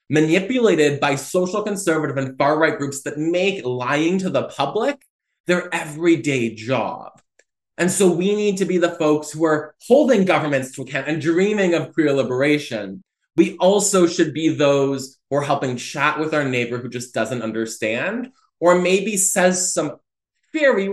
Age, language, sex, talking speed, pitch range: 20-39, English, male, 160 wpm, 140-195 Hz